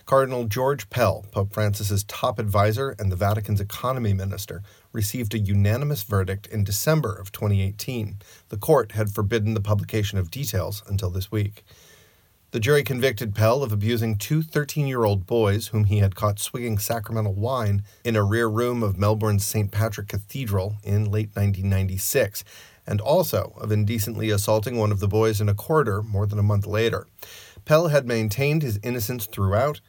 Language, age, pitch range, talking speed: English, 40-59, 100-115 Hz, 165 wpm